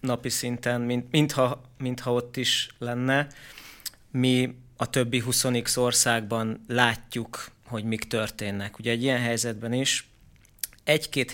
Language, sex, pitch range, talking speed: Hungarian, male, 110-130 Hz, 120 wpm